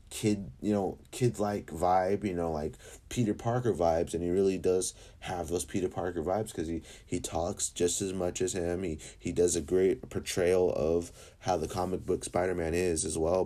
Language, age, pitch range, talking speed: English, 30-49, 75-100 Hz, 200 wpm